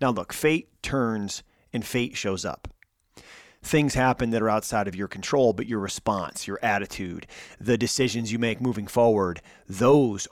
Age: 30-49